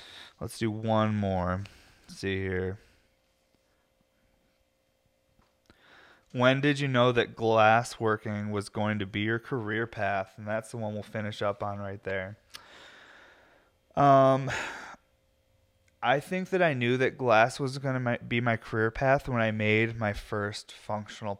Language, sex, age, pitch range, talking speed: English, male, 20-39, 105-120 Hz, 145 wpm